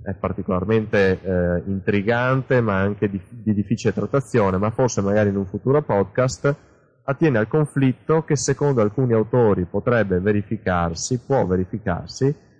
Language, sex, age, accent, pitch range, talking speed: Italian, male, 30-49, native, 95-130 Hz, 135 wpm